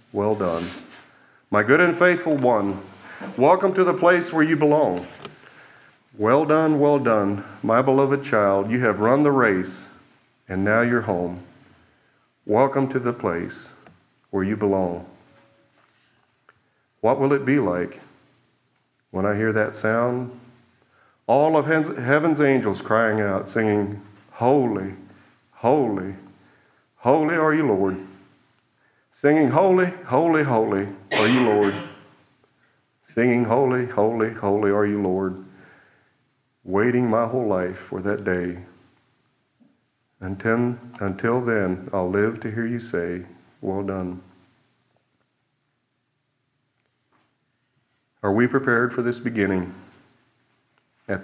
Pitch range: 95-125 Hz